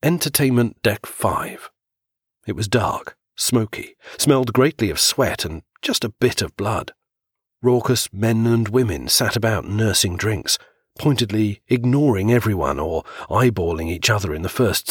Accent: British